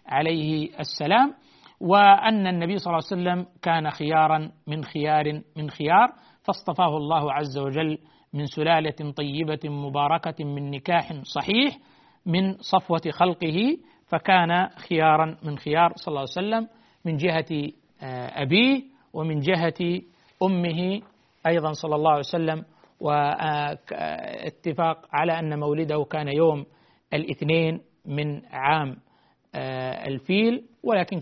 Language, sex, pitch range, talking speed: Arabic, male, 150-175 Hz, 110 wpm